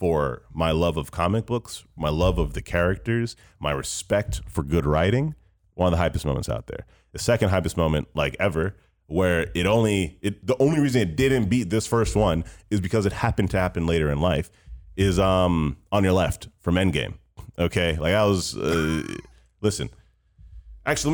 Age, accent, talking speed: 30-49, American, 185 wpm